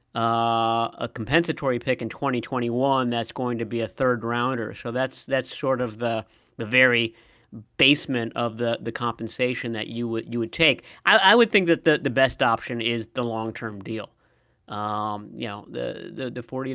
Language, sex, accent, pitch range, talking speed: English, male, American, 115-140 Hz, 190 wpm